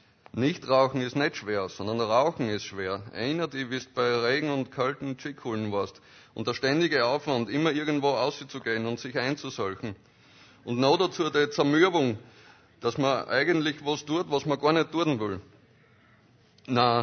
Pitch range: 120-145 Hz